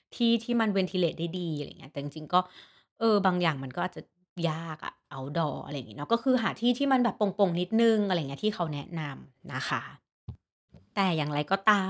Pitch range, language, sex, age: 155-215 Hz, Thai, female, 30-49